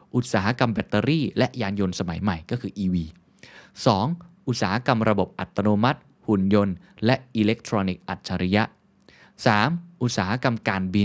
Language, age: Thai, 20-39